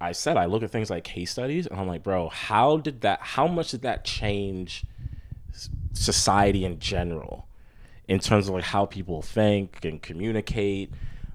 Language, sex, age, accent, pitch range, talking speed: English, male, 30-49, American, 90-110 Hz, 175 wpm